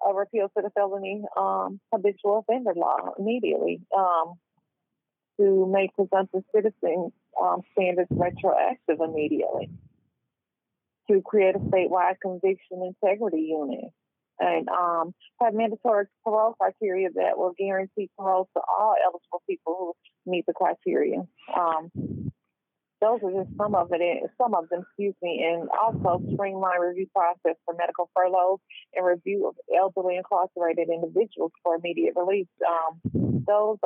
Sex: female